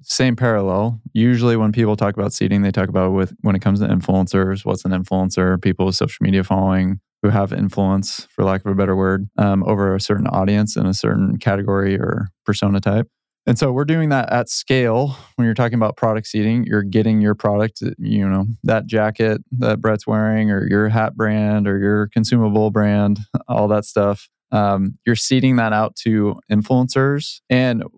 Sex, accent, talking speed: male, American, 190 wpm